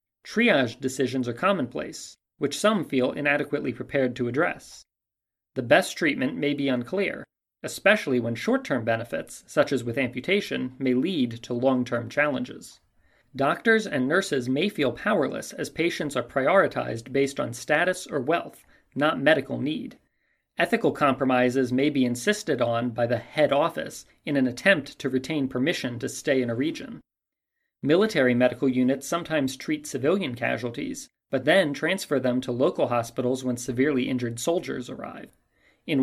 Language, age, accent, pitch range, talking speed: English, 40-59, American, 125-155 Hz, 150 wpm